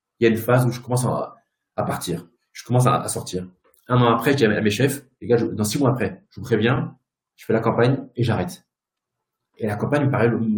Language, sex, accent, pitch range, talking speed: French, male, French, 110-145 Hz, 260 wpm